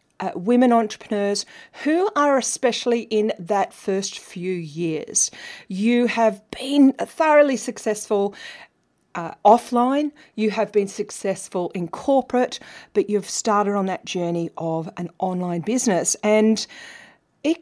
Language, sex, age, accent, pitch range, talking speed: English, female, 40-59, Australian, 175-250 Hz, 125 wpm